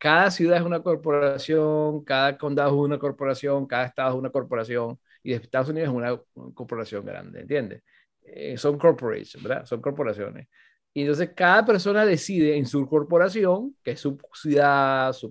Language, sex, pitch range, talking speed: Spanish, male, 130-185 Hz, 175 wpm